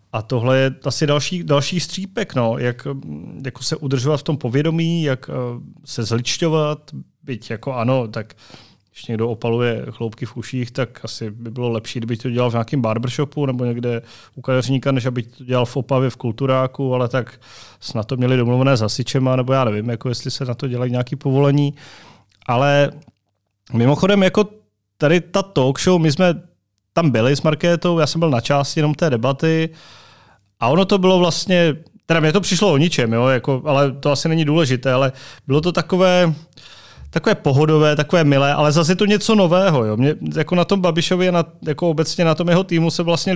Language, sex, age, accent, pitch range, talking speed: Czech, male, 30-49, native, 125-165 Hz, 190 wpm